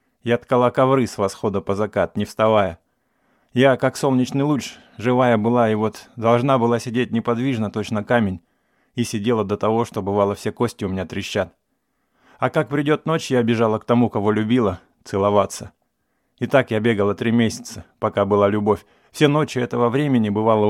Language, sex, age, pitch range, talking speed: English, male, 20-39, 105-125 Hz, 170 wpm